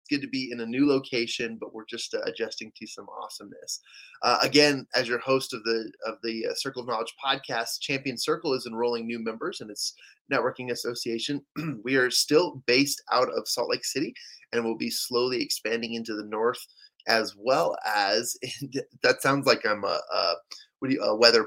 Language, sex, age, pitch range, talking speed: English, male, 20-39, 120-155 Hz, 195 wpm